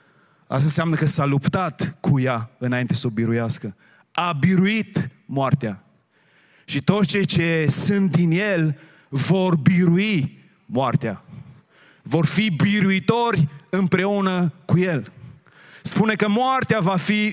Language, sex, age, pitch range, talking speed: Romanian, male, 30-49, 125-175 Hz, 120 wpm